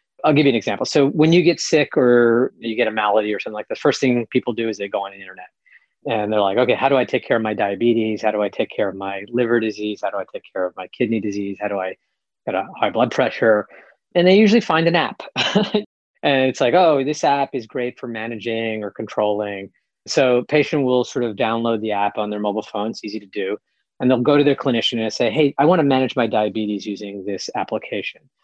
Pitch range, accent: 105-145 Hz, American